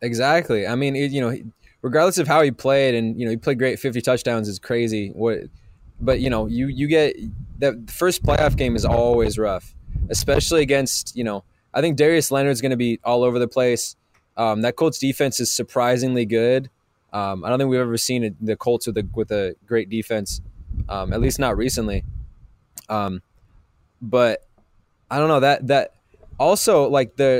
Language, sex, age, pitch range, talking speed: English, male, 20-39, 110-135 Hz, 195 wpm